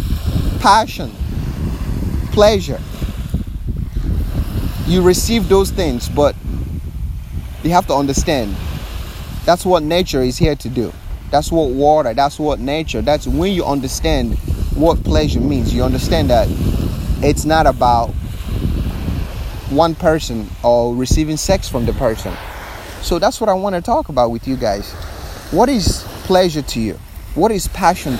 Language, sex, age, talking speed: English, male, 30-49, 135 wpm